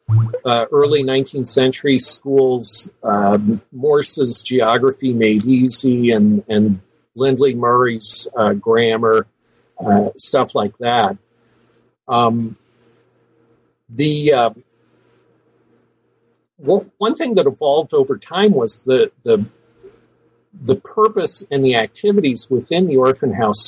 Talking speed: 105 wpm